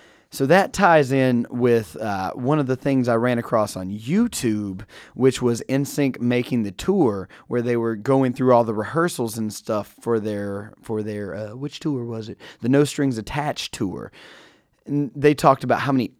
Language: English